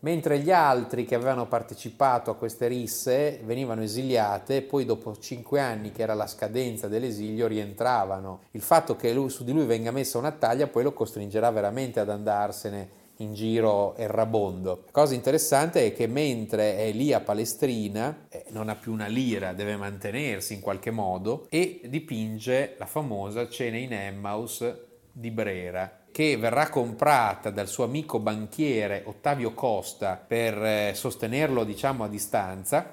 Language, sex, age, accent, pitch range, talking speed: Italian, male, 30-49, native, 105-130 Hz, 155 wpm